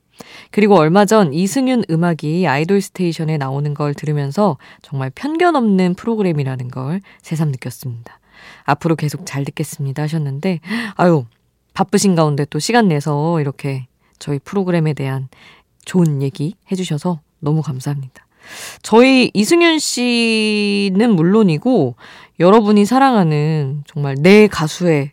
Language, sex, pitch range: Korean, female, 145-200 Hz